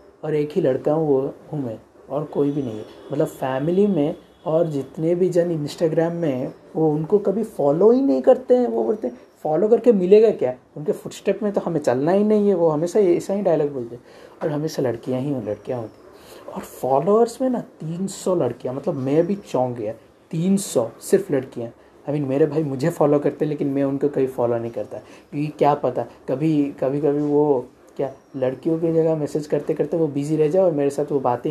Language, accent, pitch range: Hindi, native, 140-170 Hz